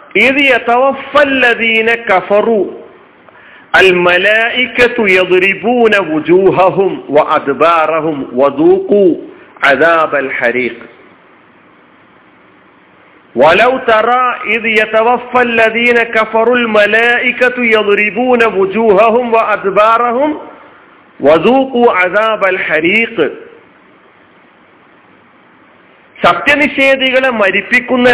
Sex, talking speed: male, 55 wpm